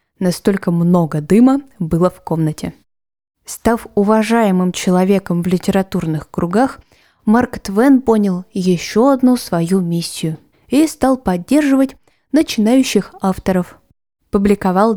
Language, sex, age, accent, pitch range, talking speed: Russian, female, 20-39, native, 180-230 Hz, 100 wpm